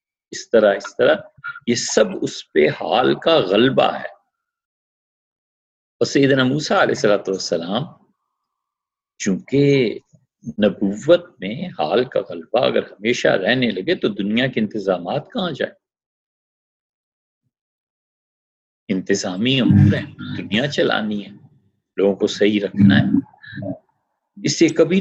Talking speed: 105 wpm